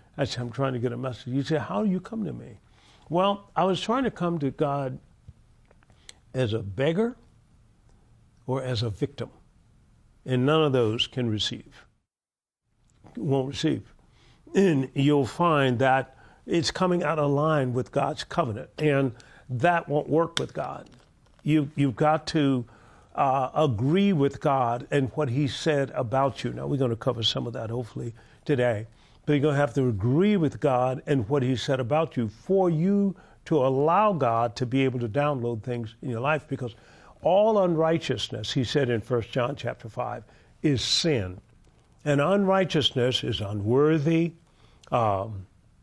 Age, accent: 50-69, American